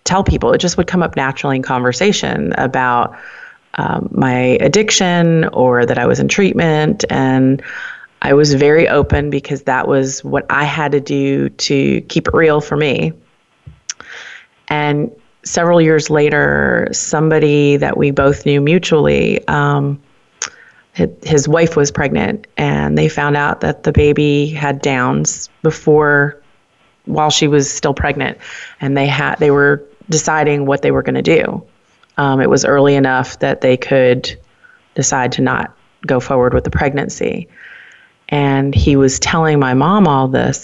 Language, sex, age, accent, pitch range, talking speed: English, female, 30-49, American, 135-155 Hz, 155 wpm